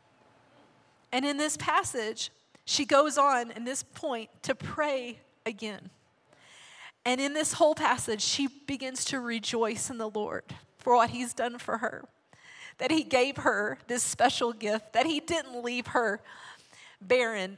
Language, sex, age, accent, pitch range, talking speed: English, female, 30-49, American, 220-280 Hz, 150 wpm